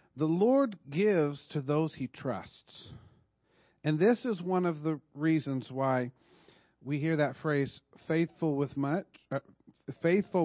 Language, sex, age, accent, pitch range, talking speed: English, male, 50-69, American, 130-165 Hz, 140 wpm